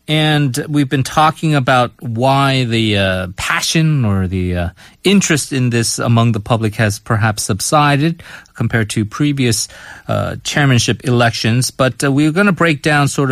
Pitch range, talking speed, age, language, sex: 110-145 Hz, 160 wpm, 30-49, English, male